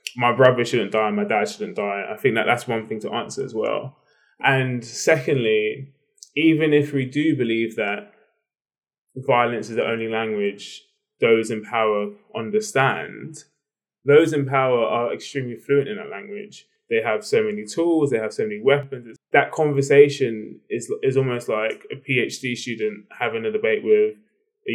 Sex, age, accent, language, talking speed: male, 20-39, British, English, 165 wpm